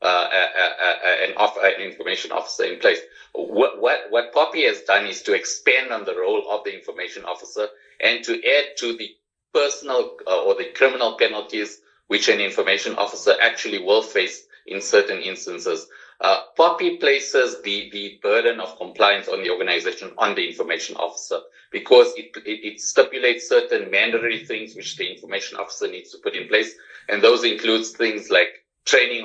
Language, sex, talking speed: English, male, 175 wpm